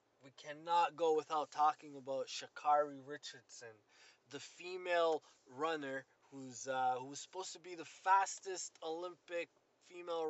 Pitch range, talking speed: 145-205 Hz, 130 wpm